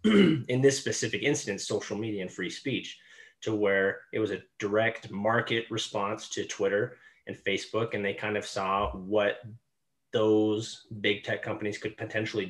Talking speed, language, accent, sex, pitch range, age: 160 wpm, English, American, male, 100-120 Hz, 20-39